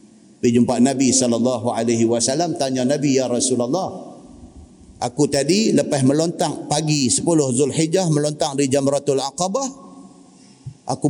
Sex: male